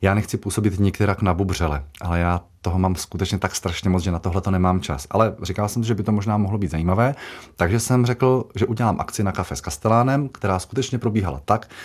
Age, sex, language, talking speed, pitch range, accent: 30-49, male, Czech, 225 wpm, 90-105 Hz, native